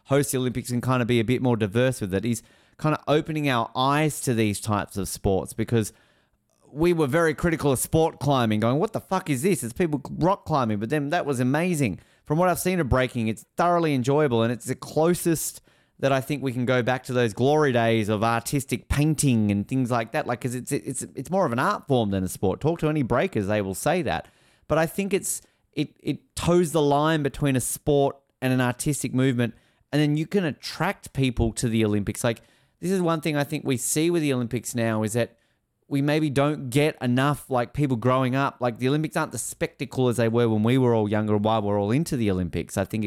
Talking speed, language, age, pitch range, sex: 240 wpm, English, 30-49, 115-150 Hz, male